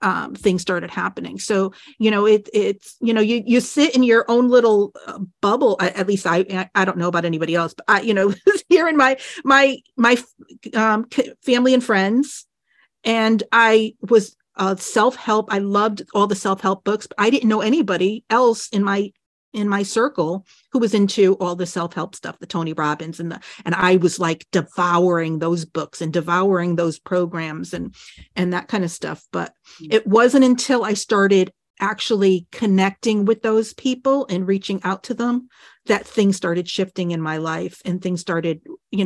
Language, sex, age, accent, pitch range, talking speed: English, female, 40-59, American, 185-240 Hz, 185 wpm